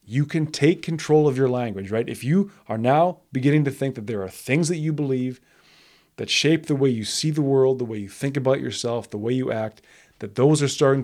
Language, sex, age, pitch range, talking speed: English, male, 20-39, 120-145 Hz, 240 wpm